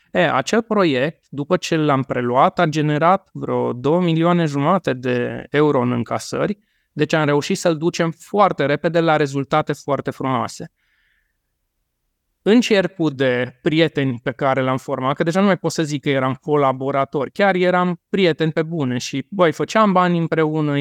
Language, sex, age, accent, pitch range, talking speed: Romanian, male, 20-39, native, 135-175 Hz, 160 wpm